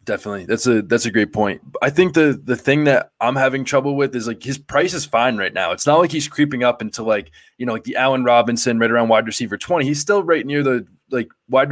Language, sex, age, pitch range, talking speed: English, male, 20-39, 110-135 Hz, 260 wpm